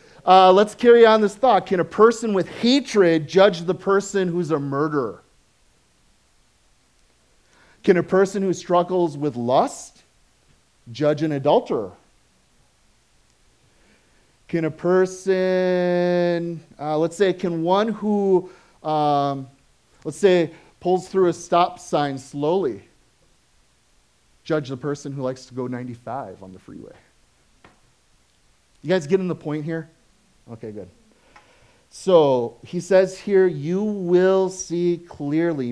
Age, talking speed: 30-49, 120 wpm